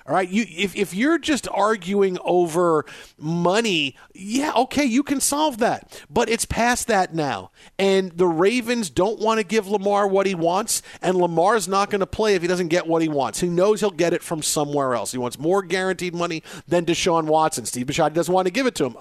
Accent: American